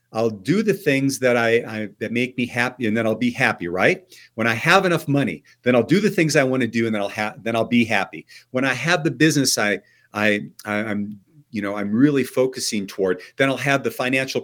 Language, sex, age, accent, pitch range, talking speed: English, male, 50-69, American, 110-145 Hz, 240 wpm